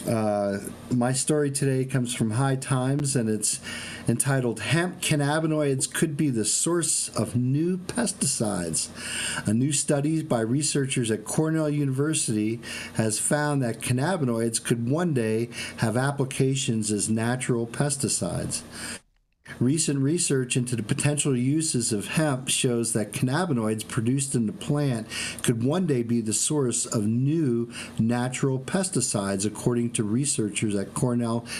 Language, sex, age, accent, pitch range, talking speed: English, male, 50-69, American, 110-140 Hz, 135 wpm